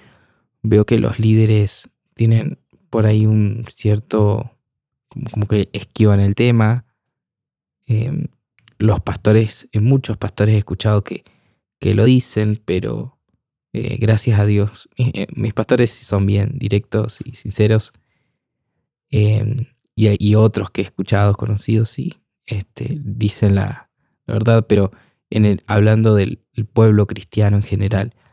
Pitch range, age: 100-115 Hz, 20-39